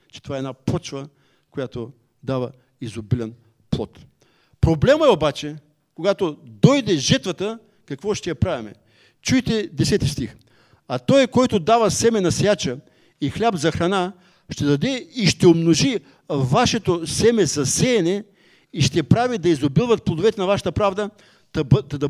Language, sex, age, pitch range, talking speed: English, male, 60-79, 140-200 Hz, 140 wpm